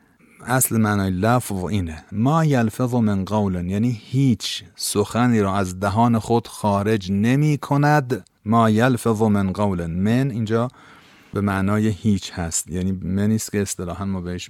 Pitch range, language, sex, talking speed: 95-115 Hz, Persian, male, 150 wpm